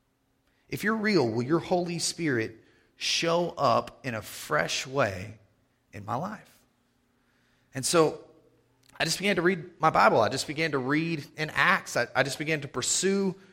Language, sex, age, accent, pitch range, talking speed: English, male, 30-49, American, 130-170 Hz, 170 wpm